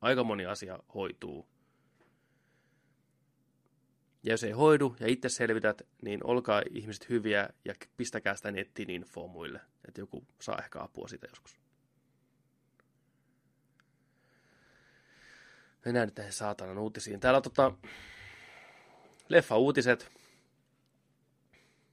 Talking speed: 100 wpm